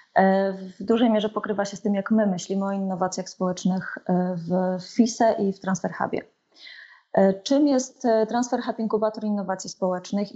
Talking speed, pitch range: 150 wpm, 190-220 Hz